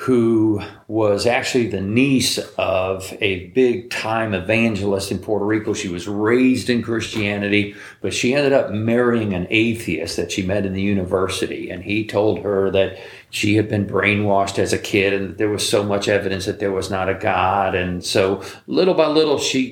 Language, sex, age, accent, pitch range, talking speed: English, male, 50-69, American, 100-120 Hz, 185 wpm